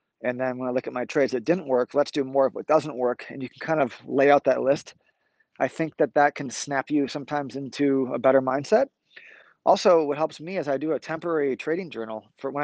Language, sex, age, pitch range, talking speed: English, male, 30-49, 125-145 Hz, 245 wpm